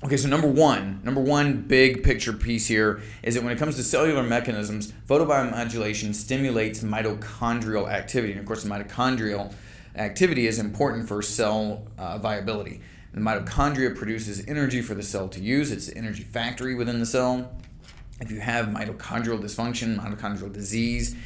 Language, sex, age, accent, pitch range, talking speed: English, male, 30-49, American, 105-125 Hz, 160 wpm